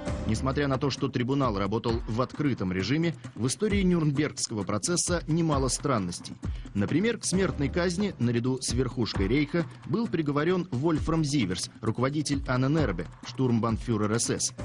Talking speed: 125 wpm